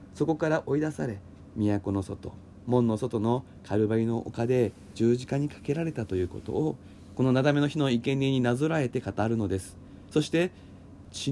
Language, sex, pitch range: Japanese, male, 95-130 Hz